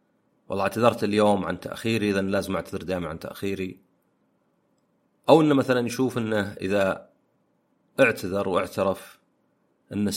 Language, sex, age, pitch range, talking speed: Arabic, male, 40-59, 95-125 Hz, 120 wpm